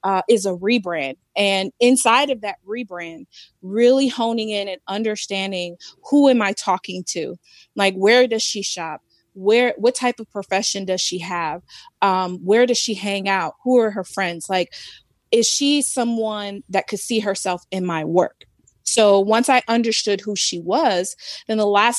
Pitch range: 185-225 Hz